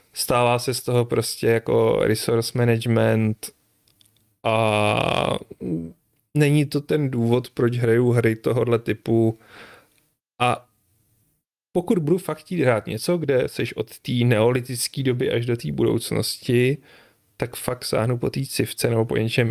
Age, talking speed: 30-49, 135 wpm